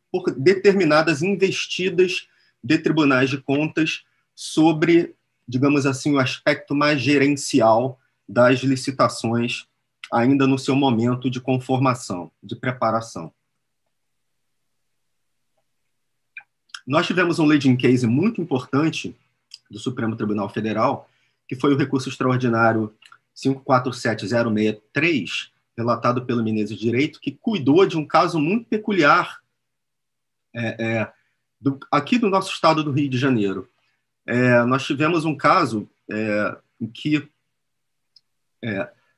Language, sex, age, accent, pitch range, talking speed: Portuguese, male, 30-49, Brazilian, 120-155 Hz, 115 wpm